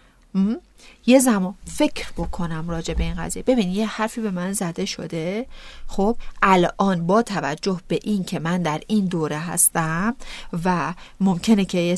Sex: female